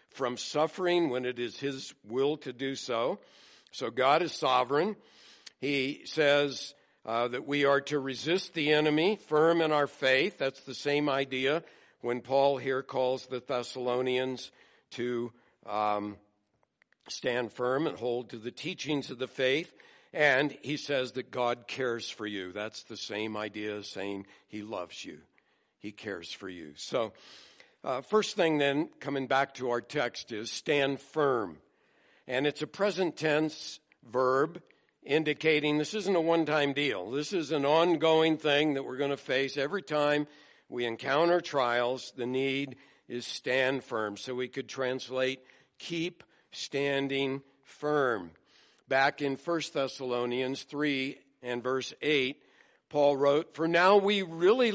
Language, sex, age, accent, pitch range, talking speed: English, male, 60-79, American, 125-150 Hz, 150 wpm